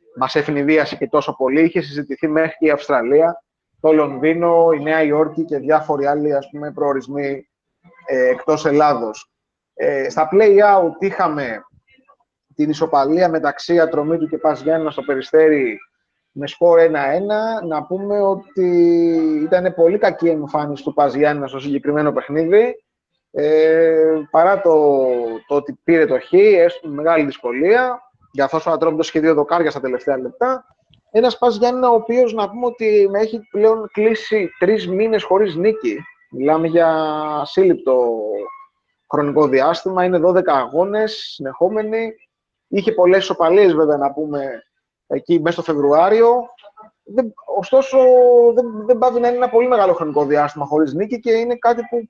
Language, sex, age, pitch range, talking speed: Greek, male, 30-49, 150-225 Hz, 135 wpm